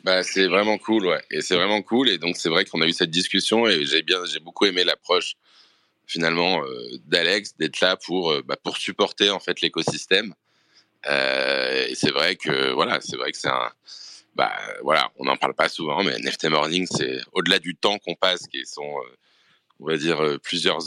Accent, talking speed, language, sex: French, 210 wpm, English, male